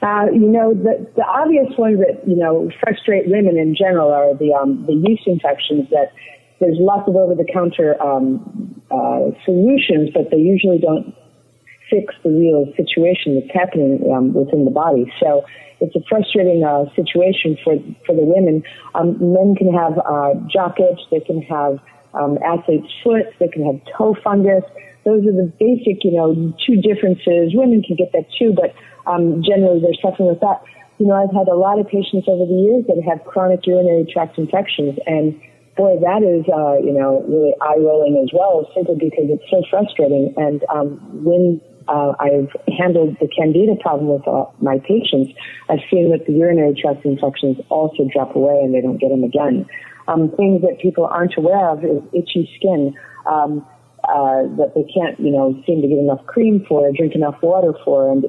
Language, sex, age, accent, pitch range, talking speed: English, female, 40-59, American, 145-190 Hz, 185 wpm